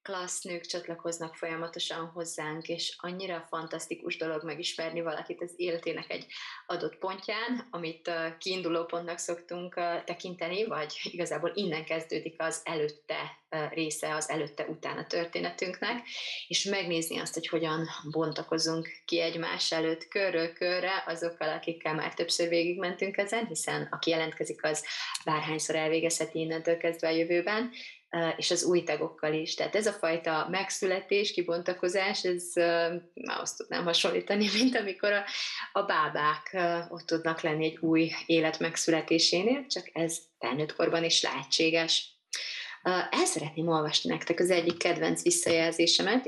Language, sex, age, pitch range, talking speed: Hungarian, female, 20-39, 160-180 Hz, 130 wpm